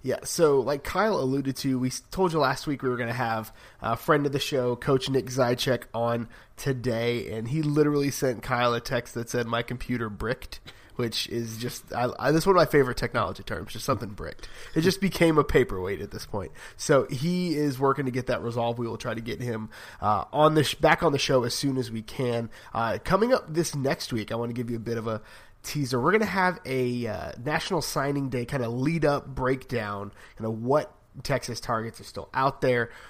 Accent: American